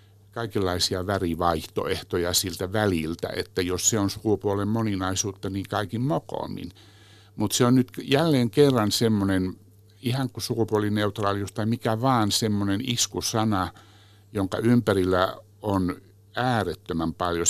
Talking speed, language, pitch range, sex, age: 115 wpm, Finnish, 90-110 Hz, male, 60-79